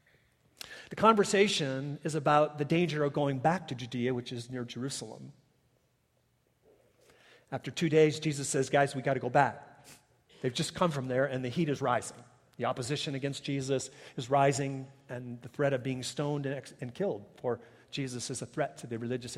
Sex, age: male, 40-59